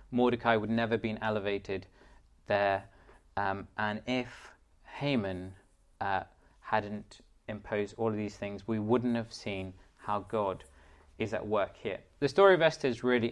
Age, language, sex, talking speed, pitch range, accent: 20-39, English, male, 155 wpm, 95-120 Hz, British